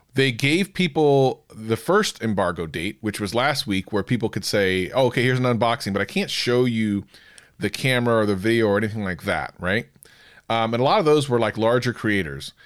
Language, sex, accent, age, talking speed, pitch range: English, male, American, 30-49, 215 wpm, 110-145 Hz